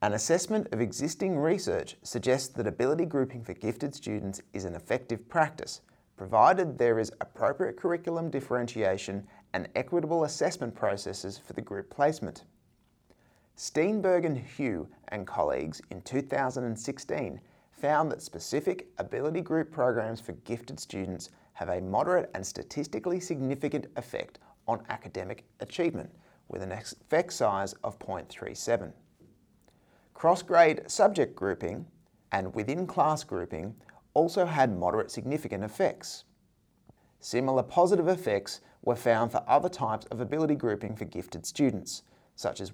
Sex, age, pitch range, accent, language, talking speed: male, 30-49, 110-155 Hz, Australian, English, 125 wpm